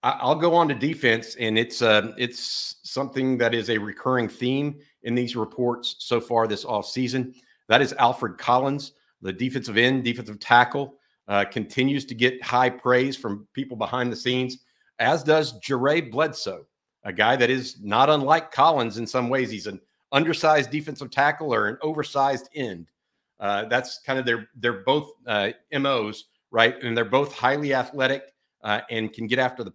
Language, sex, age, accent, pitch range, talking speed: English, male, 50-69, American, 115-140 Hz, 175 wpm